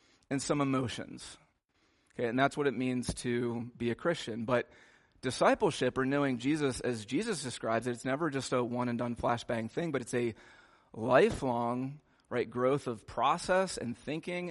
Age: 30-49